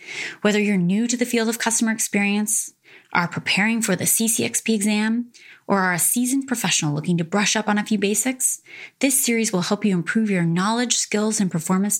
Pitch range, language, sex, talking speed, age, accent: 180-225 Hz, English, female, 195 wpm, 20-39, American